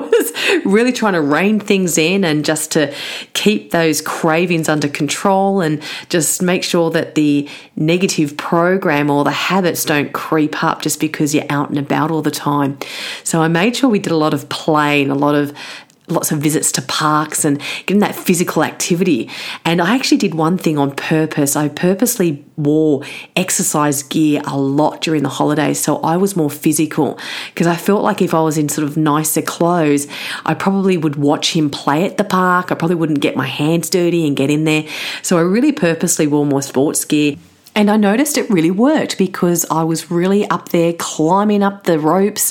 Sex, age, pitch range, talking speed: female, 30-49, 150-195 Hz, 195 wpm